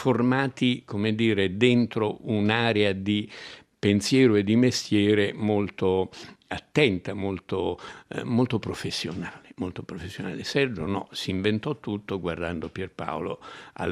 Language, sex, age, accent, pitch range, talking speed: Italian, male, 60-79, native, 90-115 Hz, 105 wpm